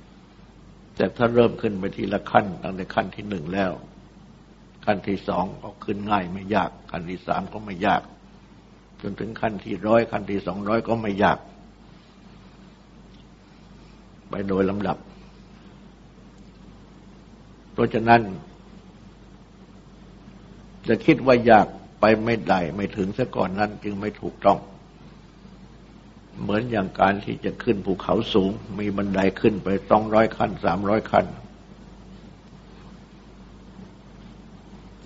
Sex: male